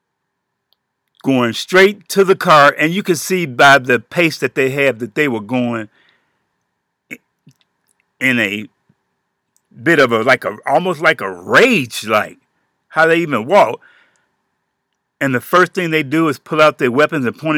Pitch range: 140-210 Hz